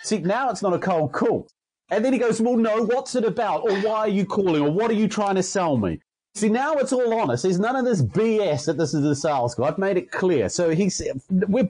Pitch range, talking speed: 165-225 Hz, 270 wpm